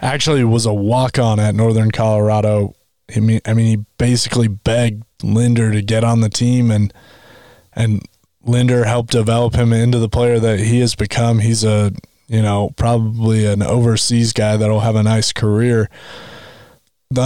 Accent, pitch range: American, 110-125 Hz